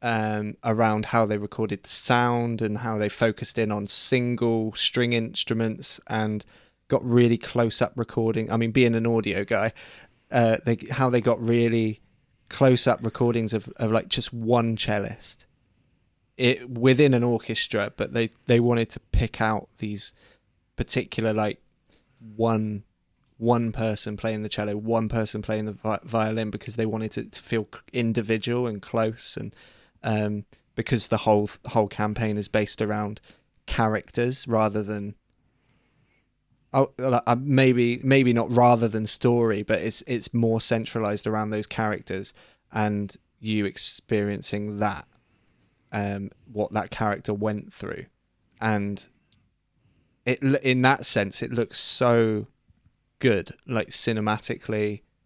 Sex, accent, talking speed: male, British, 140 wpm